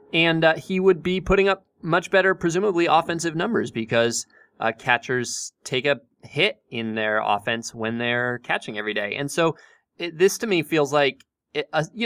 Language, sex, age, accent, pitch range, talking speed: English, male, 20-39, American, 115-150 Hz, 175 wpm